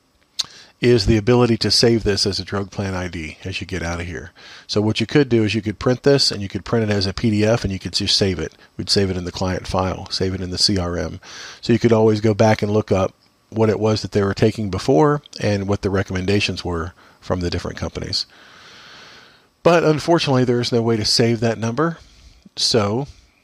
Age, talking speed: 40-59, 230 wpm